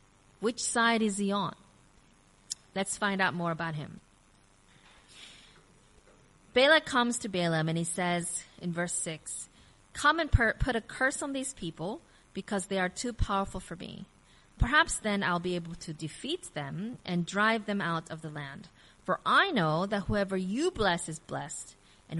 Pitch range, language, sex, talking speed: 165-220 Hz, English, female, 165 wpm